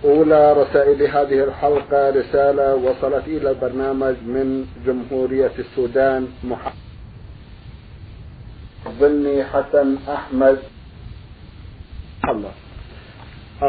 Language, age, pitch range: Arabic, 50-69, 130-140 Hz